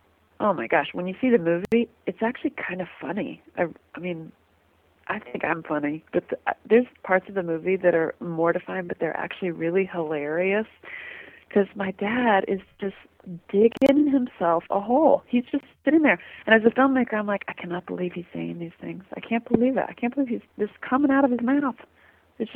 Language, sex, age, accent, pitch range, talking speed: English, female, 40-59, American, 175-240 Hz, 200 wpm